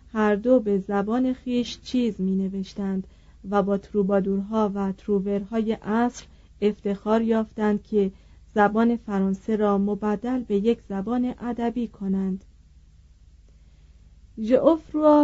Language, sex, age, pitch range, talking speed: Persian, female, 30-49, 195-235 Hz, 100 wpm